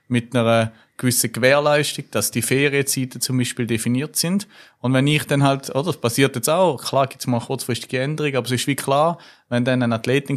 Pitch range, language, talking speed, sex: 115-130 Hz, German, 210 wpm, male